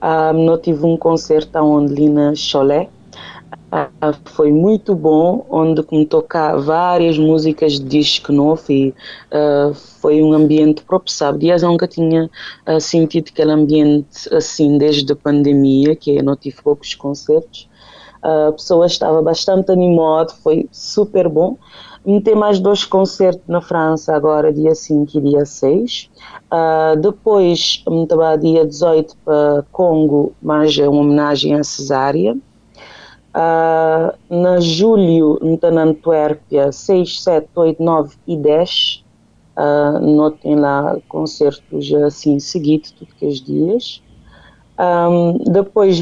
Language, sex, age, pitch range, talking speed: Portuguese, female, 20-39, 150-170 Hz, 140 wpm